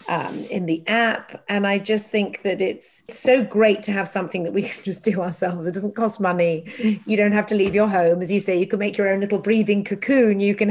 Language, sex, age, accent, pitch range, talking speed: English, female, 40-59, British, 185-225 Hz, 250 wpm